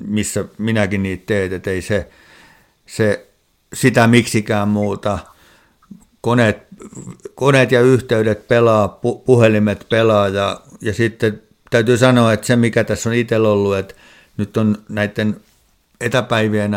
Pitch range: 100-115 Hz